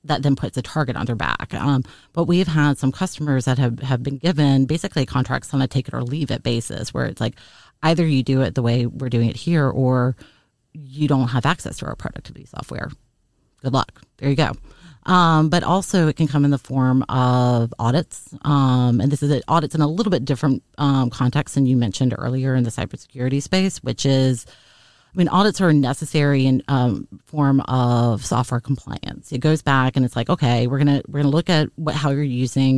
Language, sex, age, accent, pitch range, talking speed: English, female, 30-49, American, 125-150 Hz, 215 wpm